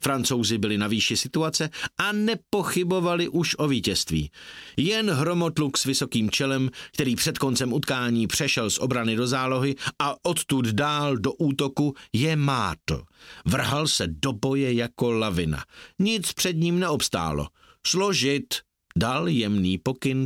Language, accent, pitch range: Czech, native, 115-155 Hz